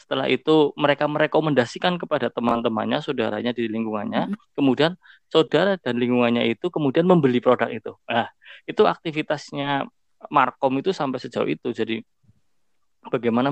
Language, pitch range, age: Indonesian, 115-140 Hz, 20-39